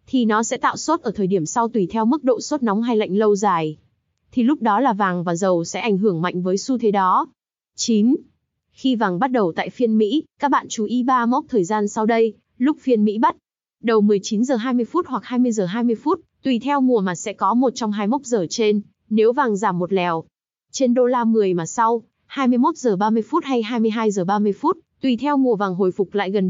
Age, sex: 20-39, female